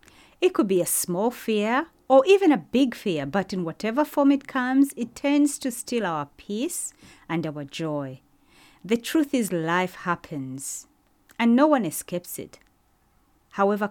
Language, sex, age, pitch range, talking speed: English, female, 30-49, 165-260 Hz, 160 wpm